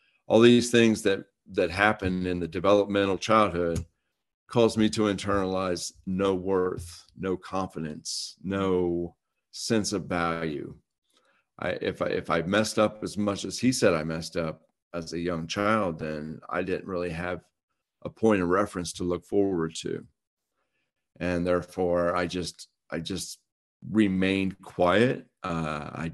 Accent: American